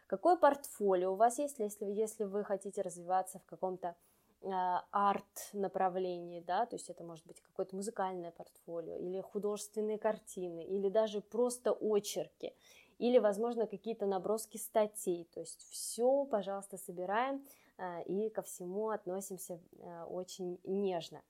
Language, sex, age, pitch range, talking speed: Russian, female, 20-39, 180-225 Hz, 130 wpm